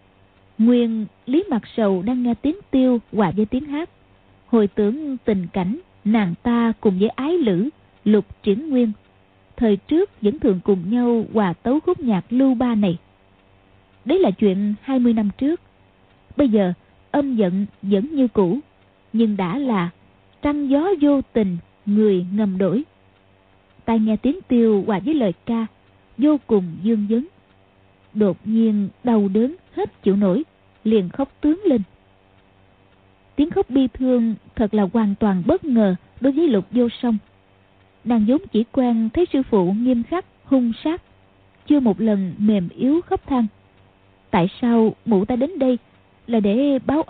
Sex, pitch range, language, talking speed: female, 195-265 Hz, Vietnamese, 160 wpm